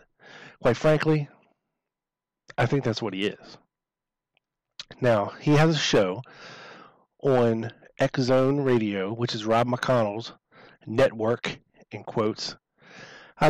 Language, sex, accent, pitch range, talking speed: English, male, American, 115-150 Hz, 105 wpm